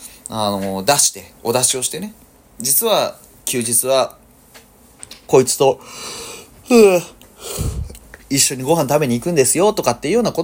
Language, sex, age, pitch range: Japanese, male, 30-49, 100-160 Hz